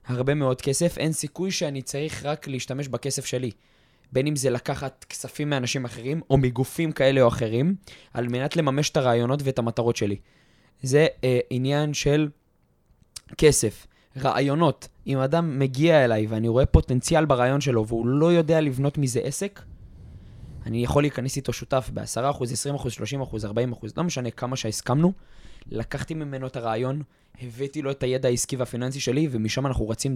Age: 20-39